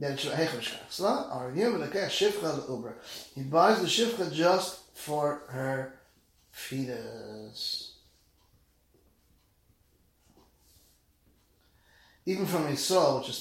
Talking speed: 65 wpm